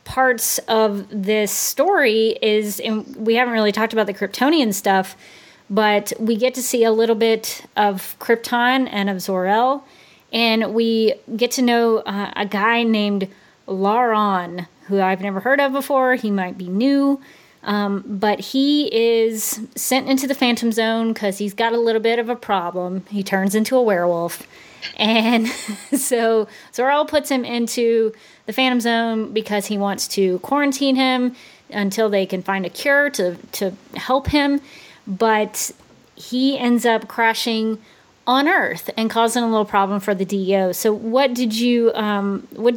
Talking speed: 165 wpm